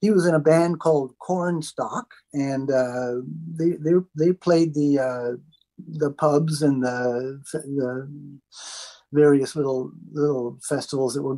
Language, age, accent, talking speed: English, 50-69, American, 135 wpm